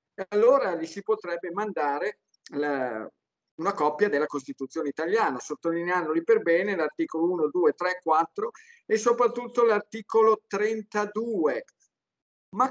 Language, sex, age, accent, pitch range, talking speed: Italian, male, 50-69, native, 185-255 Hz, 110 wpm